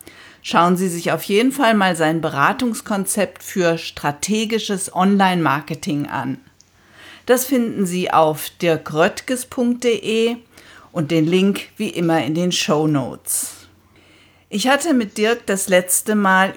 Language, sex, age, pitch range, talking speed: German, female, 50-69, 165-215 Hz, 120 wpm